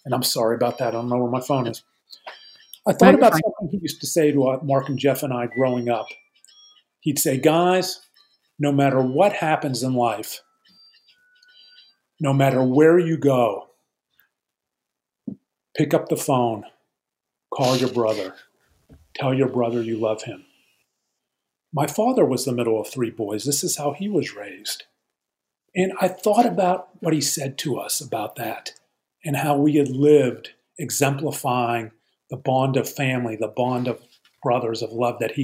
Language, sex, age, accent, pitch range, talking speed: English, male, 40-59, American, 120-165 Hz, 165 wpm